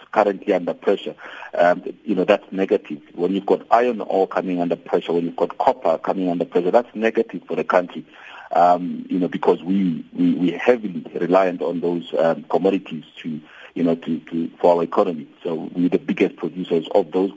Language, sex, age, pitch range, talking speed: English, male, 40-59, 85-110 Hz, 200 wpm